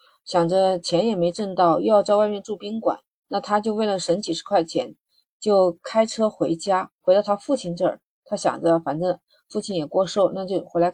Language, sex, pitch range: Chinese, female, 180-225 Hz